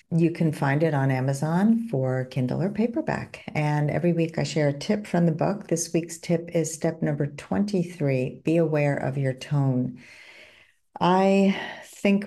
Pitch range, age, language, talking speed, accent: 140-190 Hz, 50-69, English, 165 wpm, American